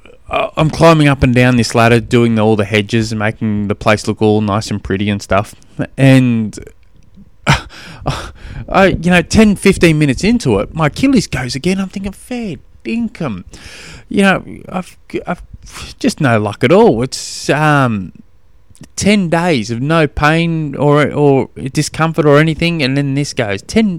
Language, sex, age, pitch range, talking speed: English, male, 20-39, 100-155 Hz, 165 wpm